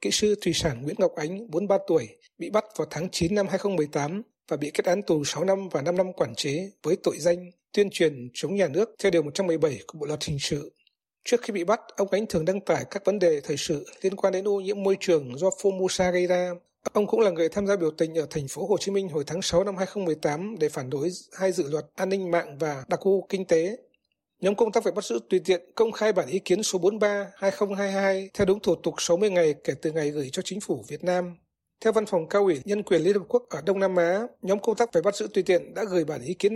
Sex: male